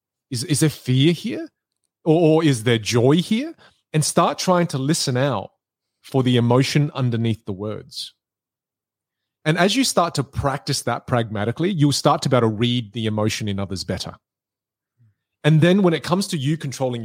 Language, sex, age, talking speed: English, male, 30-49, 175 wpm